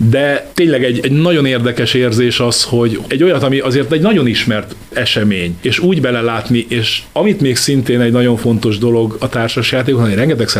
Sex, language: male, Hungarian